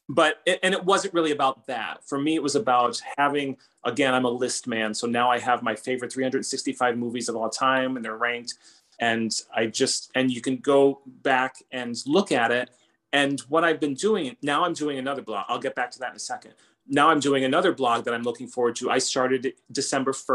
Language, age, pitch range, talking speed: English, 30-49, 125-150 Hz, 220 wpm